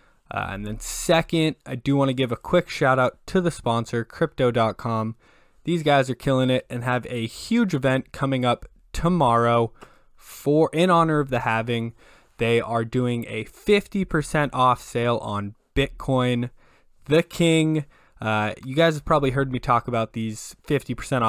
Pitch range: 115-145 Hz